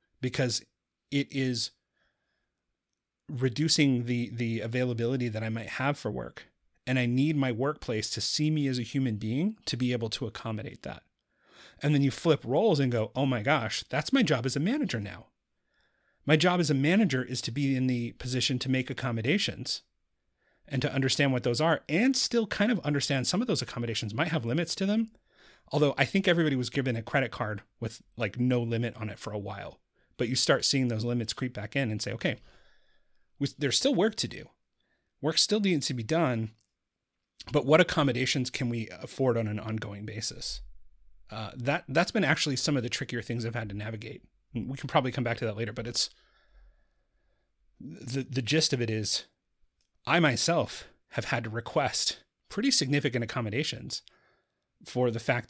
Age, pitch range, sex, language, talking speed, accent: 30-49, 115-145 Hz, male, English, 190 wpm, American